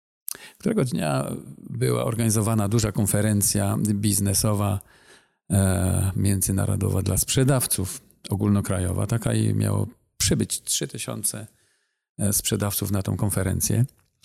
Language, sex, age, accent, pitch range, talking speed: Polish, male, 40-59, native, 100-115 Hz, 90 wpm